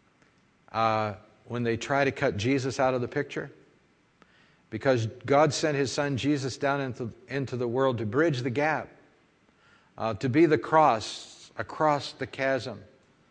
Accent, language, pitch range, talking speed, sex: American, English, 110-135 Hz, 155 wpm, male